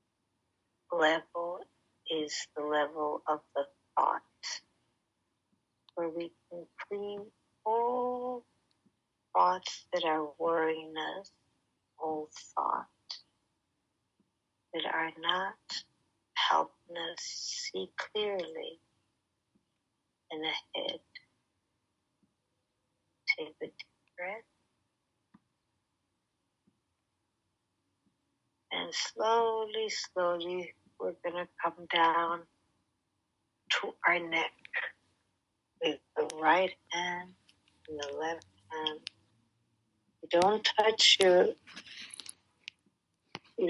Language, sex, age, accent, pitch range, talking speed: English, female, 60-79, American, 150-220 Hz, 75 wpm